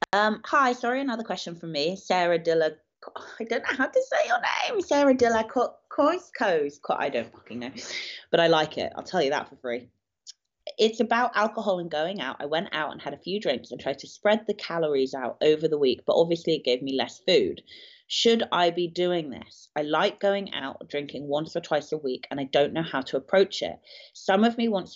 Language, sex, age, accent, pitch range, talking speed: English, female, 30-49, British, 145-210 Hz, 220 wpm